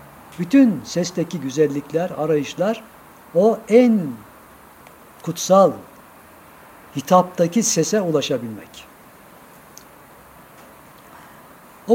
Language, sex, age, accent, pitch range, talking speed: Turkish, male, 60-79, native, 145-205 Hz, 55 wpm